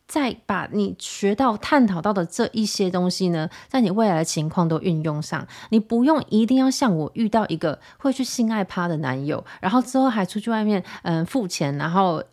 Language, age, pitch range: Chinese, 20-39, 170-230 Hz